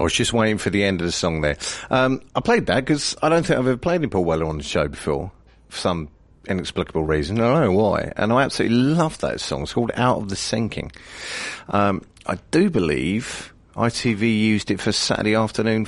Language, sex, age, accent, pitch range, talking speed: English, male, 40-59, British, 85-115 Hz, 225 wpm